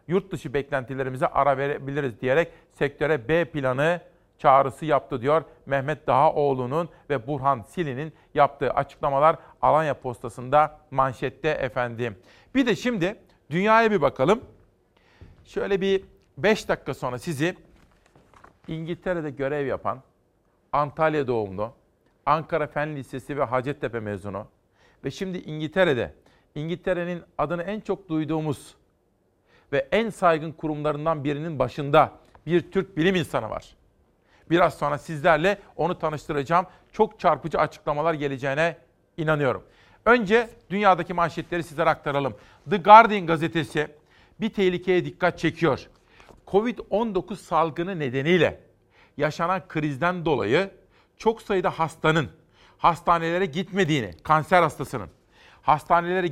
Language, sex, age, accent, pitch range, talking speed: Turkish, male, 50-69, native, 140-180 Hz, 110 wpm